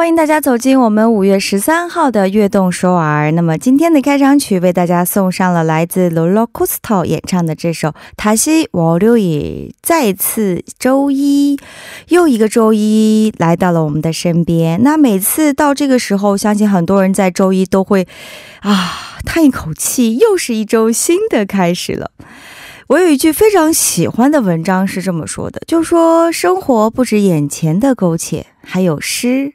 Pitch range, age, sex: 170-270 Hz, 20-39, female